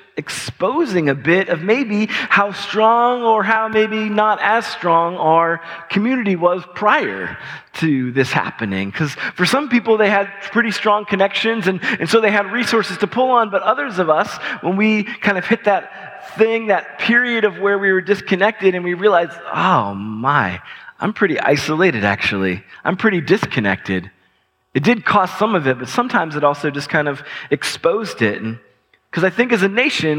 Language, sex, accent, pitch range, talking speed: English, male, American, 145-200 Hz, 180 wpm